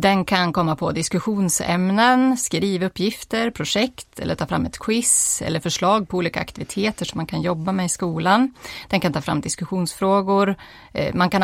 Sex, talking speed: female, 170 wpm